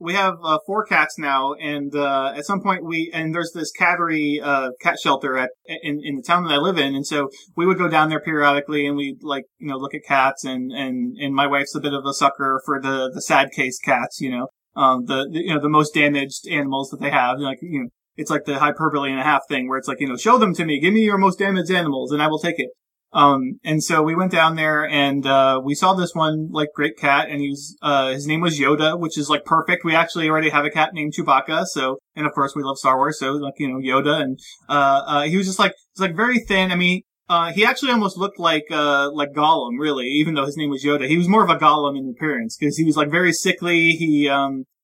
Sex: male